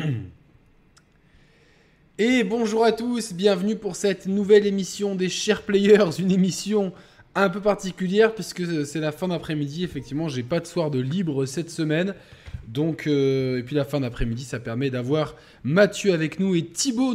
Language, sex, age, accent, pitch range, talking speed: French, male, 20-39, French, 130-185 Hz, 160 wpm